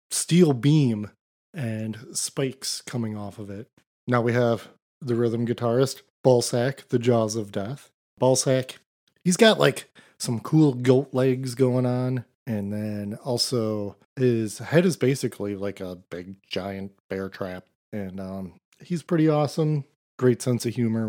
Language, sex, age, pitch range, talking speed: English, male, 30-49, 110-135 Hz, 145 wpm